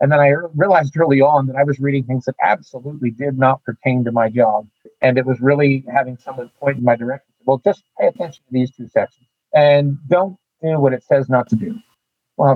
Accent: American